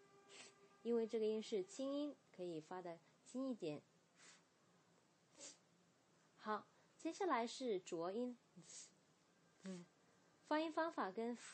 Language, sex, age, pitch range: Chinese, female, 20-39, 170-220 Hz